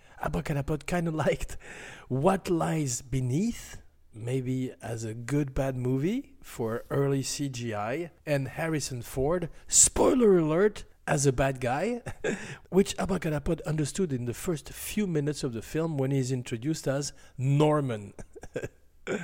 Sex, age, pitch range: male, 40-59, 125-175 Hz